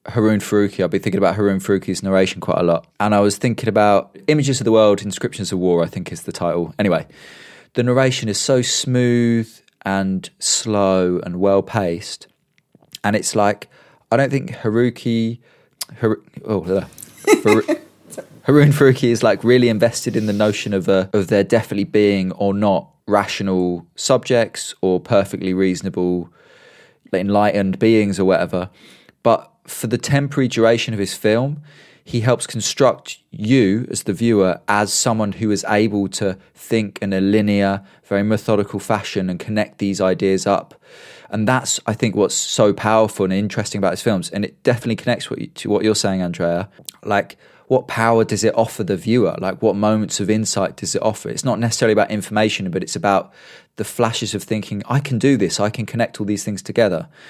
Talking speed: 175 wpm